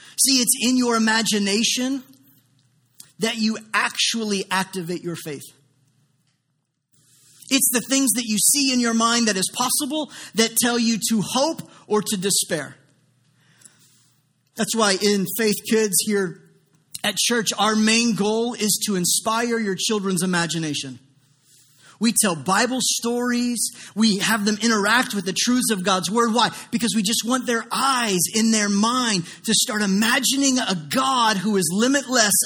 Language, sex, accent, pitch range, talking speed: English, male, American, 185-240 Hz, 150 wpm